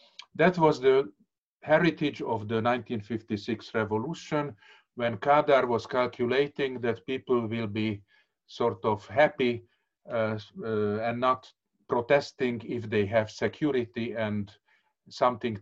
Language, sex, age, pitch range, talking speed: Hungarian, male, 50-69, 110-140 Hz, 115 wpm